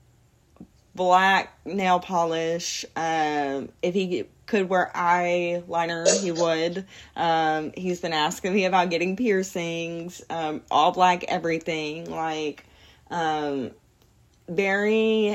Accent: American